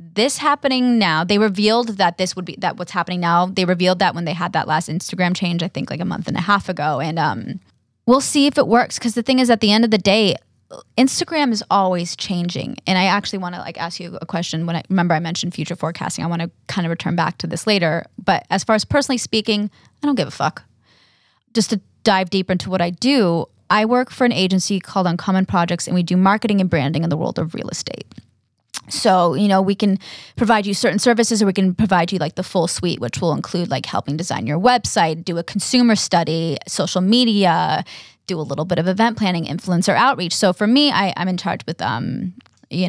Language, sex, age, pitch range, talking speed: English, female, 10-29, 175-220 Hz, 240 wpm